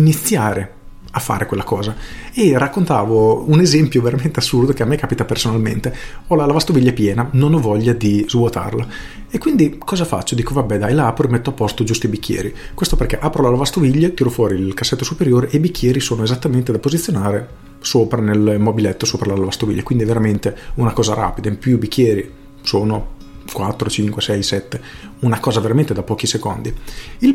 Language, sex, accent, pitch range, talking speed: Italian, male, native, 110-145 Hz, 190 wpm